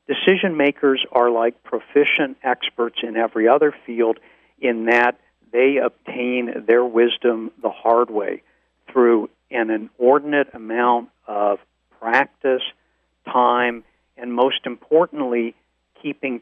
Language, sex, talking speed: English, male, 110 wpm